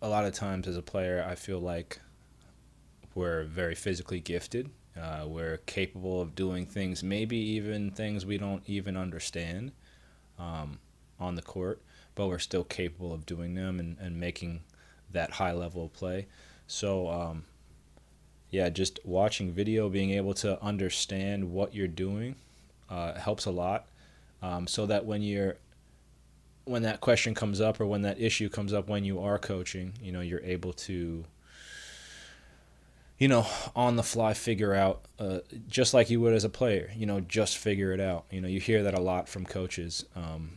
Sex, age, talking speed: male, 20-39, 175 wpm